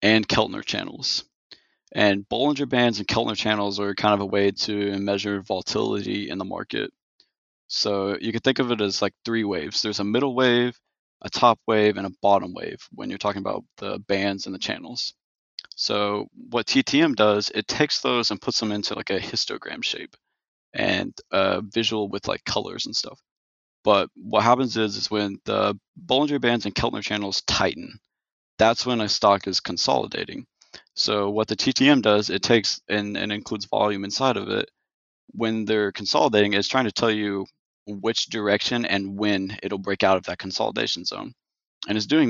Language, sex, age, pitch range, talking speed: English, male, 20-39, 100-115 Hz, 180 wpm